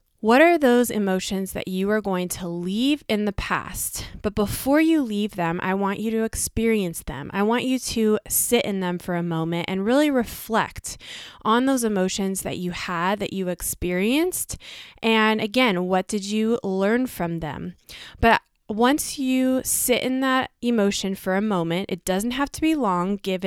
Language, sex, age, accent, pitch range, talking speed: English, female, 20-39, American, 185-235 Hz, 180 wpm